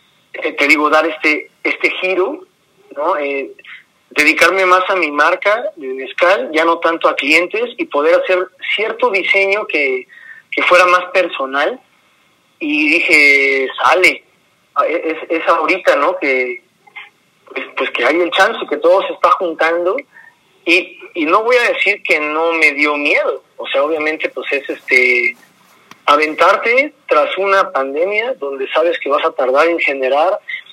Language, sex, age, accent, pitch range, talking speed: Spanish, male, 30-49, Mexican, 150-215 Hz, 150 wpm